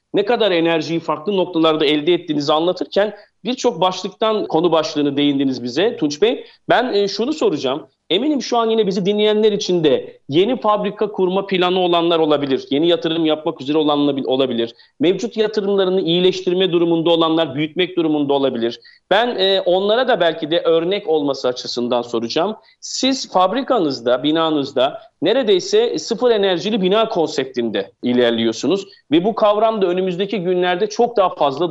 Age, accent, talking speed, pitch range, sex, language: 40-59, native, 140 wpm, 155-220 Hz, male, Turkish